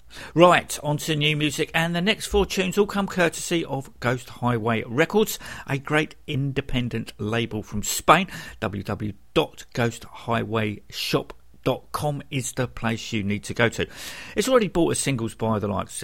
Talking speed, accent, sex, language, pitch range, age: 150 wpm, British, male, English, 110-155 Hz, 50-69